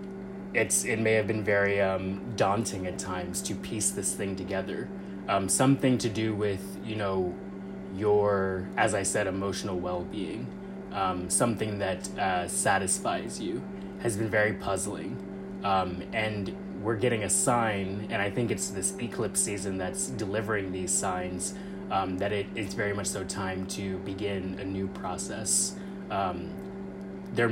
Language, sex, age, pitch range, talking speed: English, male, 20-39, 95-110 Hz, 155 wpm